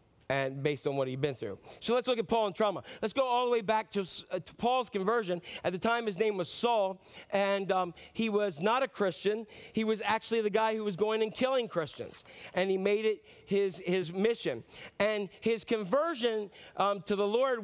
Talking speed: 220 wpm